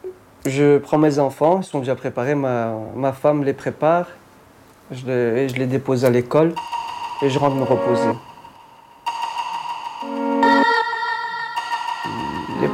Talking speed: 120 wpm